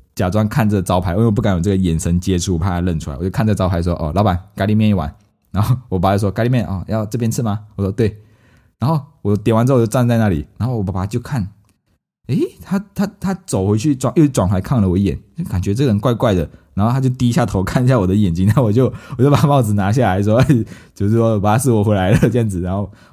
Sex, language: male, Chinese